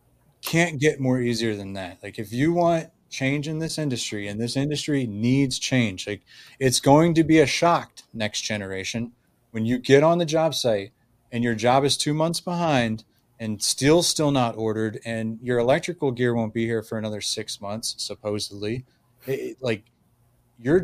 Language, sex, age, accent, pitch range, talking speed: English, male, 30-49, American, 115-145 Hz, 175 wpm